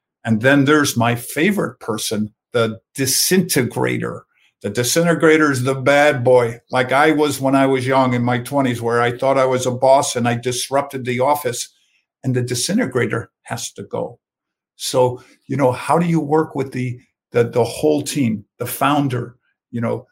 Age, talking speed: 50-69, 175 wpm